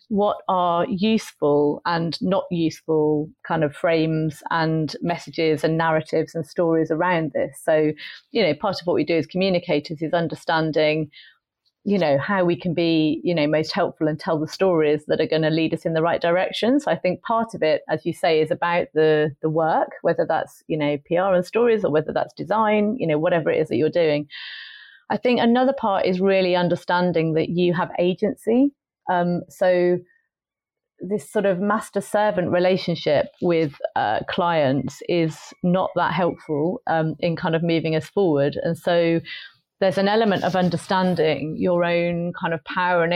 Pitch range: 160-185 Hz